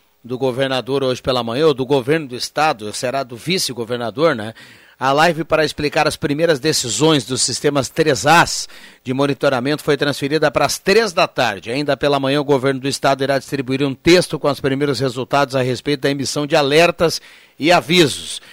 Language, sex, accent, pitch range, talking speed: Portuguese, male, Brazilian, 130-150 Hz, 185 wpm